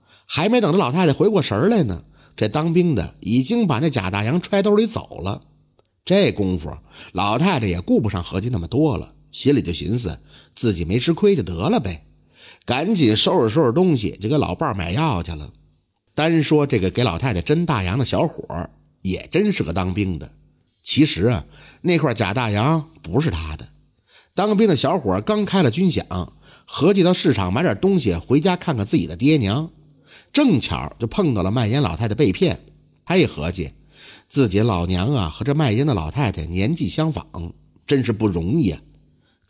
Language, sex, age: Chinese, male, 50-69